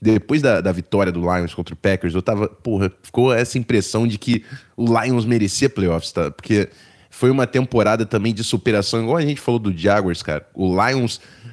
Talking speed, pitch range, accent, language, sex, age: 200 wpm, 100-125 Hz, Brazilian, Portuguese, male, 20-39